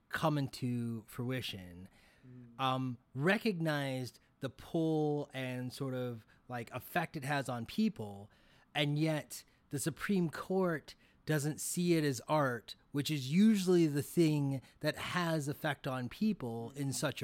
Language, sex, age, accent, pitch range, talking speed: English, male, 30-49, American, 125-160 Hz, 130 wpm